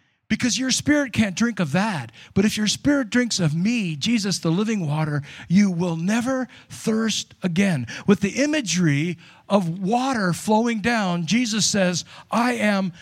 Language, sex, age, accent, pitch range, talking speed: English, male, 50-69, American, 195-250 Hz, 155 wpm